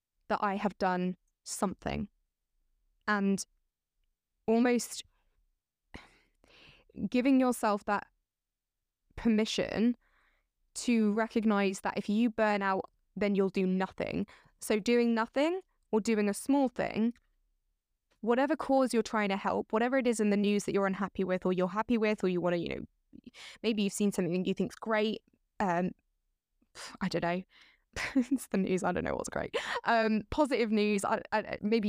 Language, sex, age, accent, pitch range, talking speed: English, female, 20-39, British, 185-225 Hz, 150 wpm